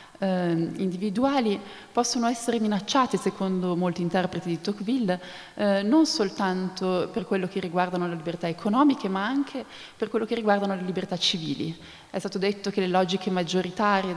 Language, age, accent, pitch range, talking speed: Italian, 20-39, native, 185-230 Hz, 150 wpm